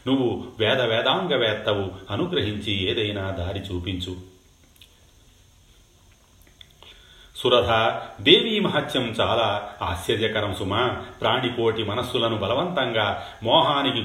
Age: 40-59